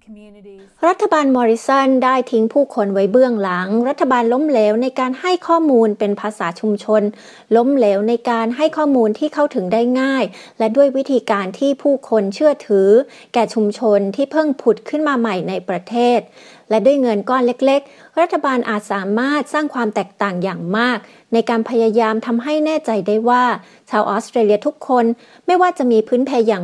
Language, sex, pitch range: Thai, female, 205-260 Hz